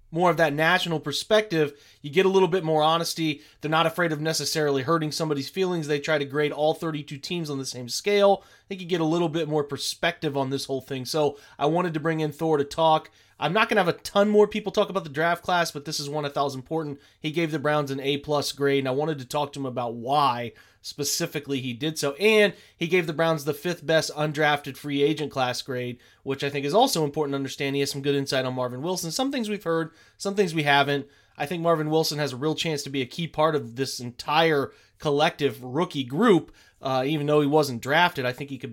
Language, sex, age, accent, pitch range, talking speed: English, male, 30-49, American, 140-170 Hz, 250 wpm